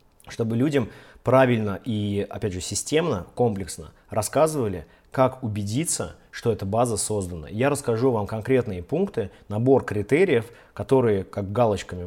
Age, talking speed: 20-39, 125 wpm